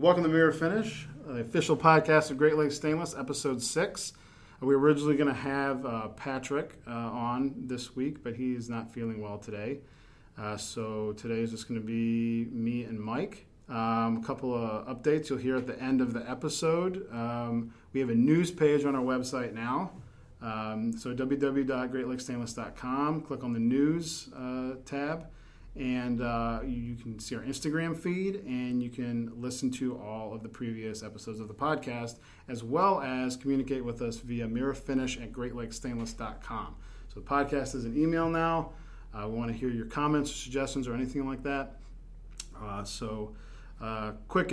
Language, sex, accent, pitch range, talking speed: English, male, American, 115-140 Hz, 175 wpm